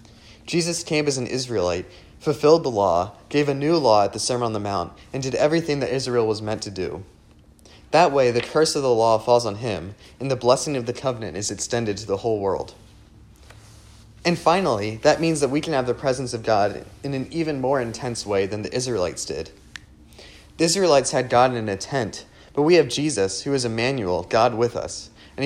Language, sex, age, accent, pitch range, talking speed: English, male, 30-49, American, 110-145 Hz, 210 wpm